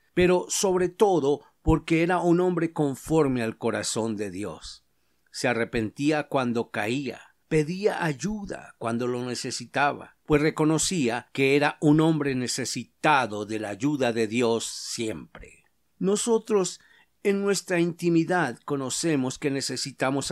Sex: male